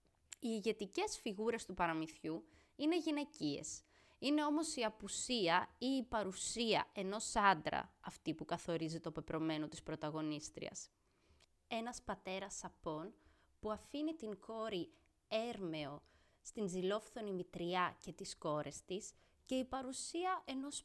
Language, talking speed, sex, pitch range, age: Greek, 120 wpm, female, 175-260 Hz, 20-39